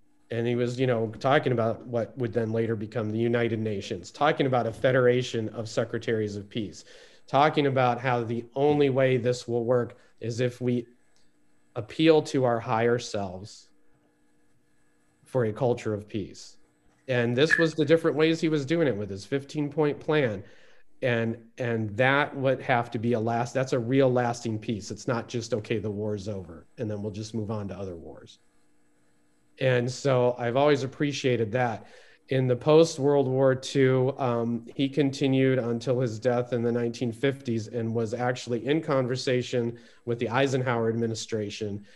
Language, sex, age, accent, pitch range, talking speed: English, male, 40-59, American, 110-130 Hz, 170 wpm